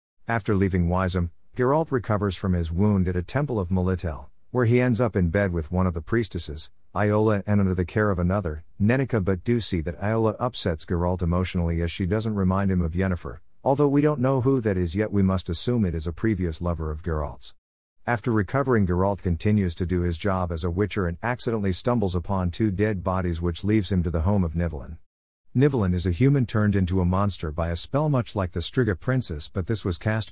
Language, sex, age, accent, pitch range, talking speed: English, male, 50-69, American, 90-115 Hz, 220 wpm